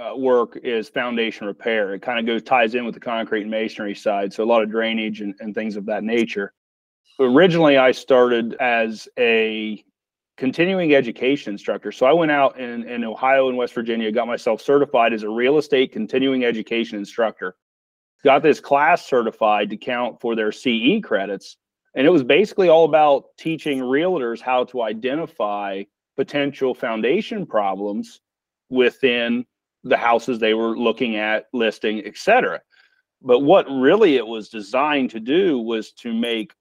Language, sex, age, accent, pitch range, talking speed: English, male, 40-59, American, 110-135 Hz, 160 wpm